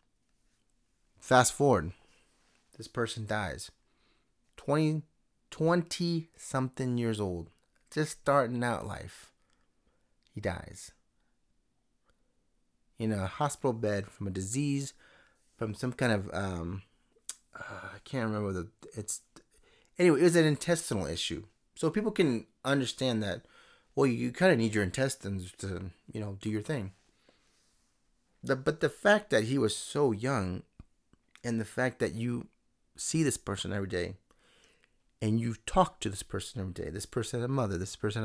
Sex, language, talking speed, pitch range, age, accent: male, English, 145 wpm, 95-125 Hz, 30-49, American